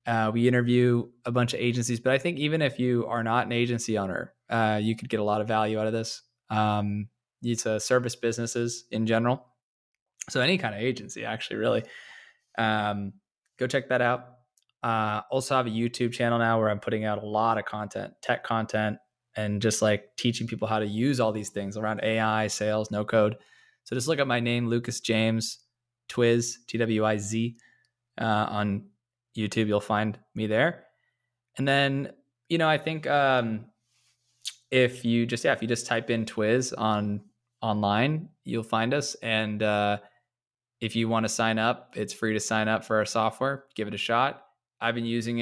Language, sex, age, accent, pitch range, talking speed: English, male, 20-39, American, 105-120 Hz, 190 wpm